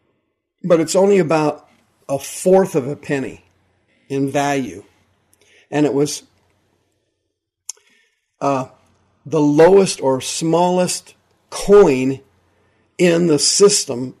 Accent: American